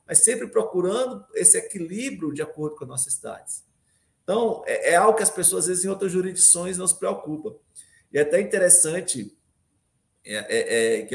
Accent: Brazilian